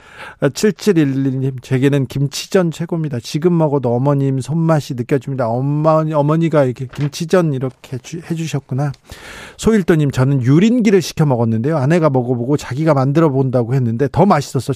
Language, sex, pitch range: Korean, male, 130-185 Hz